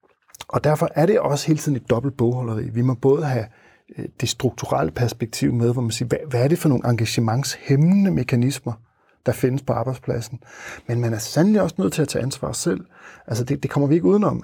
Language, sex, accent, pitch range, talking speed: Danish, male, native, 115-140 Hz, 210 wpm